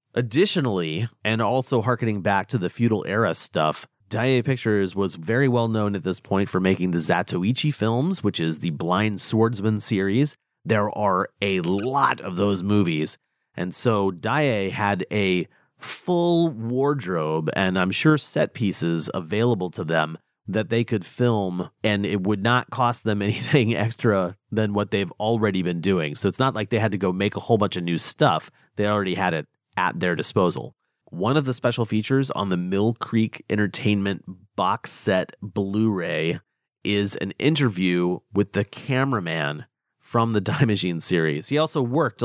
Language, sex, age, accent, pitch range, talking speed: English, male, 30-49, American, 95-120 Hz, 170 wpm